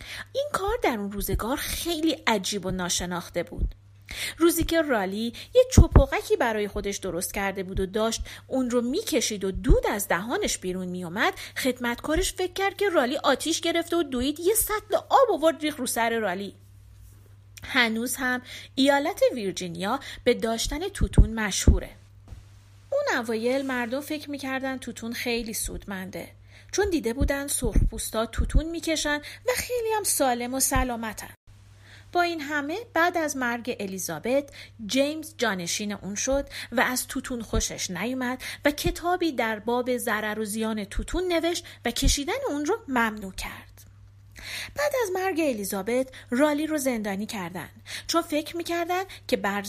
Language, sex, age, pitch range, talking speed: Persian, female, 40-59, 195-310 Hz, 145 wpm